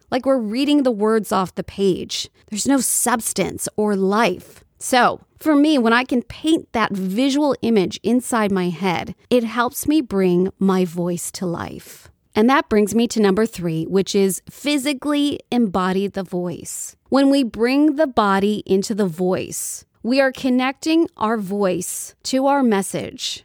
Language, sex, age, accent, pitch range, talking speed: English, female, 30-49, American, 195-280 Hz, 160 wpm